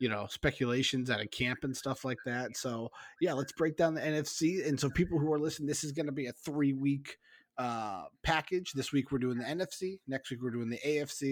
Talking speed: 235 wpm